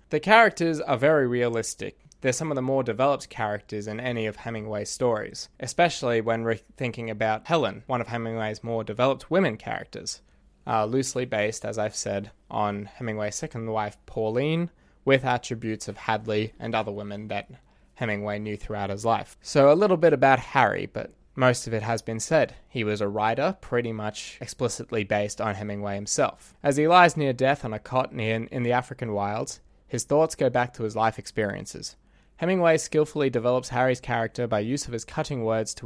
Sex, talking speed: male, 185 wpm